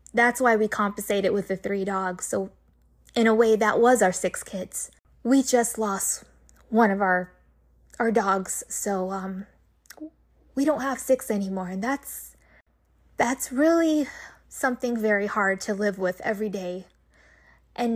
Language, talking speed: English, 150 wpm